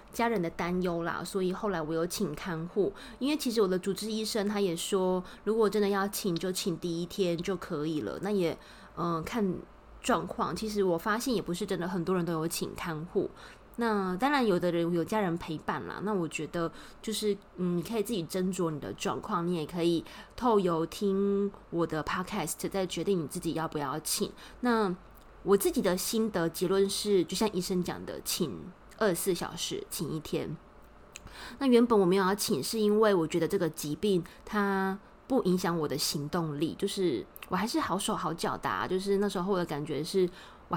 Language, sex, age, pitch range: Chinese, female, 20-39, 170-205 Hz